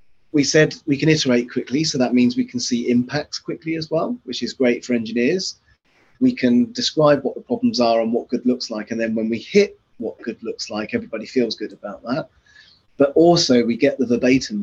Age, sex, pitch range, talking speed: 20-39, male, 115-140 Hz, 220 wpm